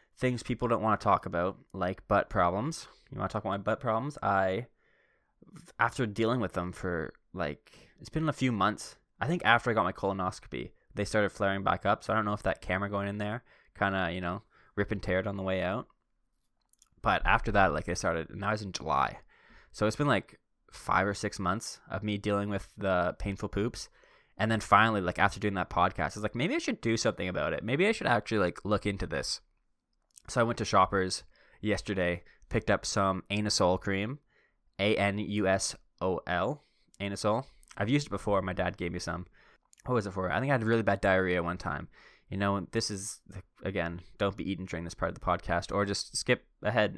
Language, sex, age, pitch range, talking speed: English, male, 20-39, 95-110 Hz, 225 wpm